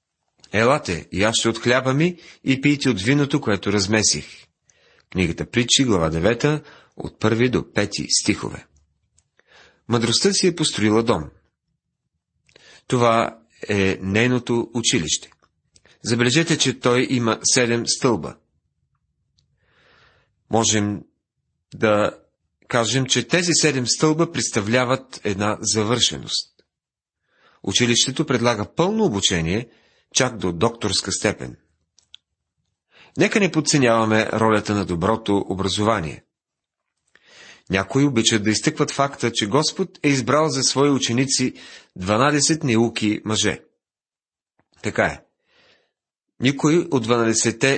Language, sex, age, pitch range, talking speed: Bulgarian, male, 40-59, 105-140 Hz, 100 wpm